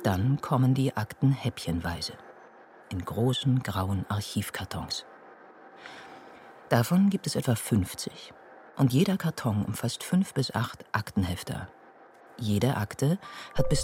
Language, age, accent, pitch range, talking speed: German, 50-69, German, 95-135 Hz, 115 wpm